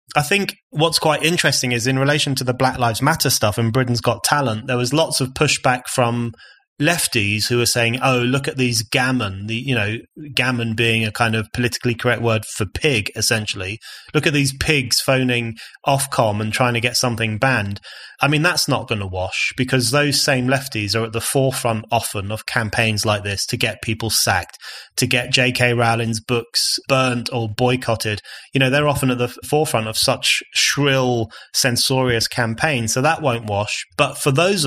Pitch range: 115-140 Hz